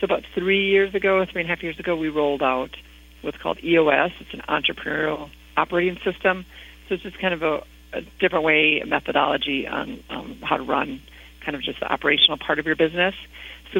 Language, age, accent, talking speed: English, 40-59, American, 210 wpm